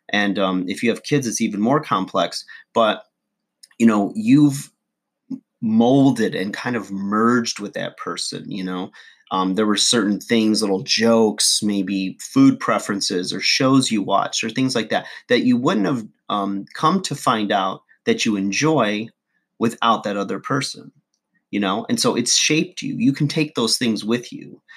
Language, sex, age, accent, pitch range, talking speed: English, male, 30-49, American, 100-130 Hz, 175 wpm